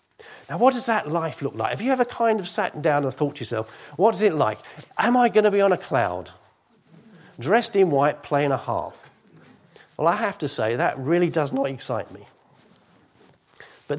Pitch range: 125-175 Hz